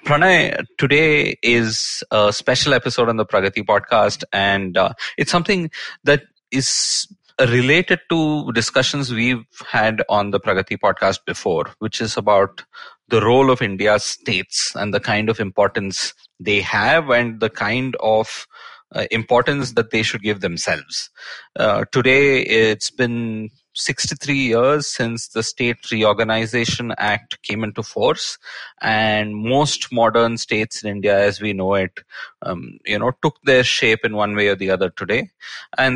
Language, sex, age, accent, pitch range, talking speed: English, male, 30-49, Indian, 105-135 Hz, 150 wpm